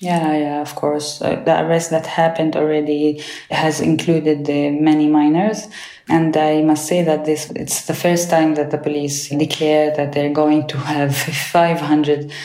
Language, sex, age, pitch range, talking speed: English, female, 20-39, 145-155 Hz, 170 wpm